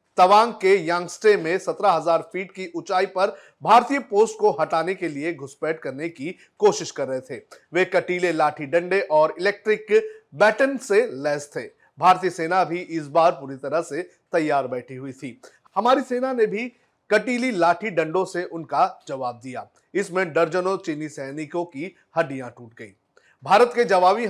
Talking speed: 165 wpm